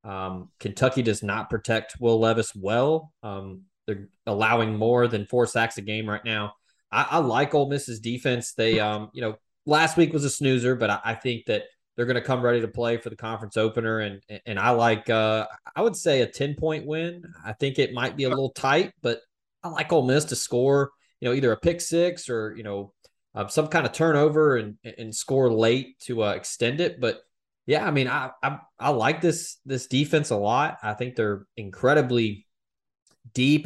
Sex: male